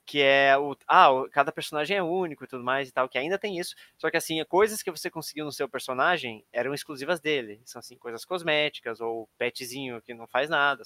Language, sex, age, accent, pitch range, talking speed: Portuguese, male, 20-39, Brazilian, 130-175 Hz, 220 wpm